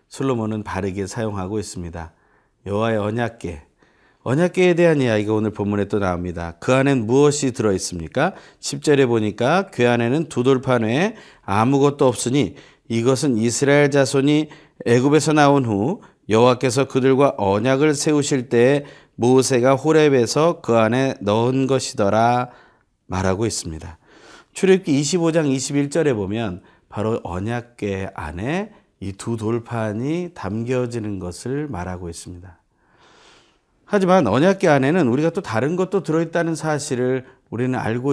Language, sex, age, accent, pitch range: Korean, male, 40-59, native, 110-155 Hz